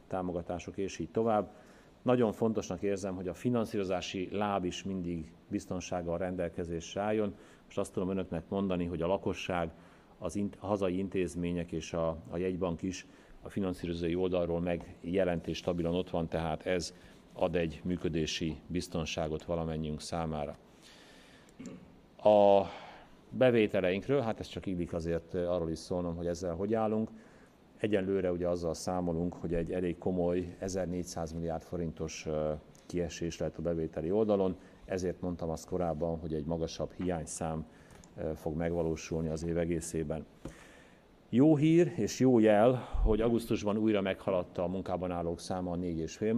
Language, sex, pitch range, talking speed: Hungarian, male, 85-100 Hz, 140 wpm